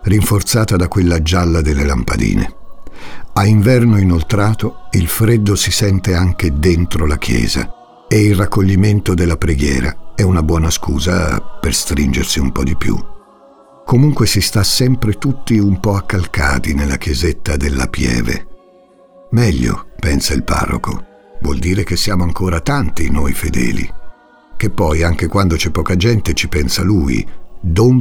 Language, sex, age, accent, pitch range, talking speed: Italian, male, 60-79, native, 85-110 Hz, 145 wpm